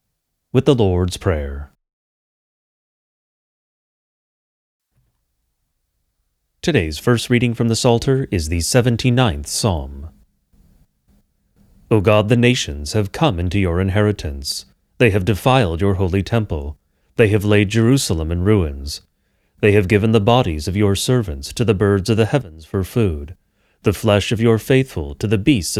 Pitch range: 85-115 Hz